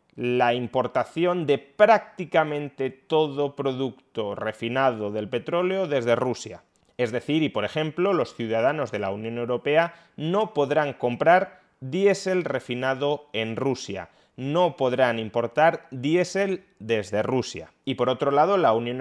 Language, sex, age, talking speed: Spanish, male, 30-49, 130 wpm